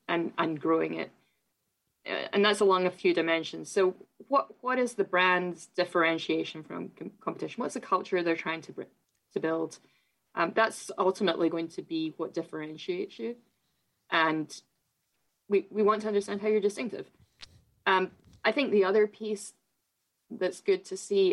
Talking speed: 155 wpm